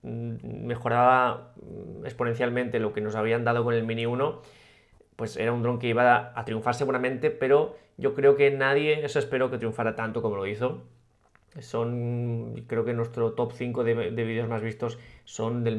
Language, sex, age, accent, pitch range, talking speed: Spanish, male, 20-39, Spanish, 115-140 Hz, 180 wpm